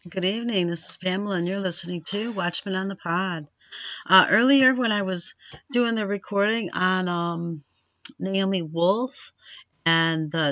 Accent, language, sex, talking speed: American, English, female, 155 wpm